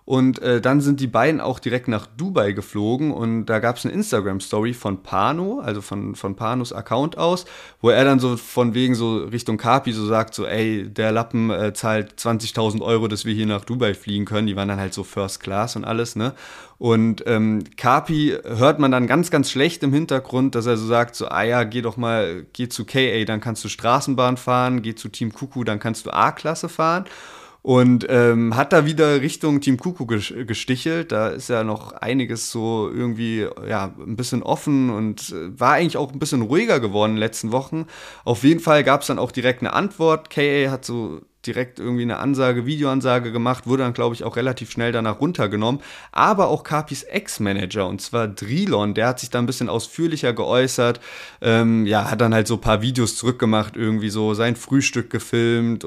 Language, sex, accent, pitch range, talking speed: German, male, German, 110-130 Hz, 205 wpm